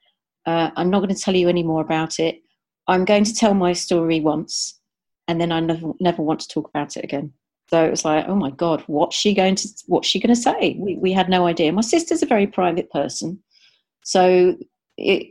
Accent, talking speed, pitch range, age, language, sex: British, 215 wpm, 155-185 Hz, 40-59, English, female